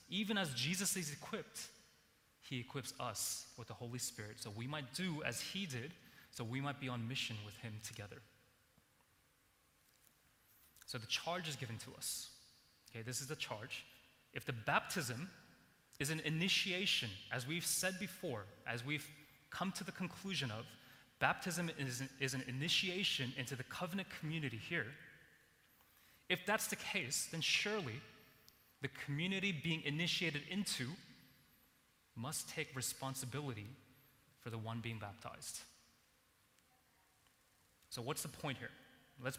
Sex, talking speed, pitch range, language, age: male, 140 wpm, 125-160 Hz, English, 20-39